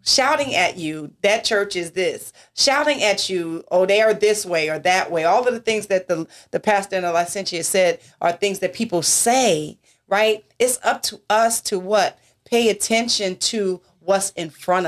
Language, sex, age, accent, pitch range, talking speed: English, female, 30-49, American, 180-235 Hz, 195 wpm